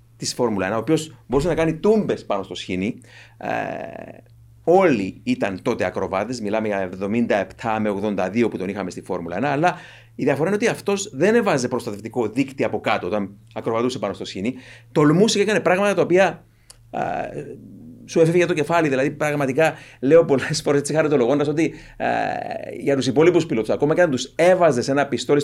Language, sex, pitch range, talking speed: Greek, male, 115-160 Hz, 170 wpm